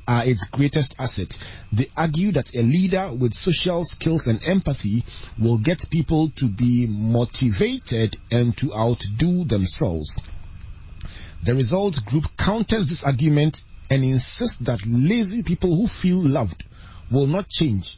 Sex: male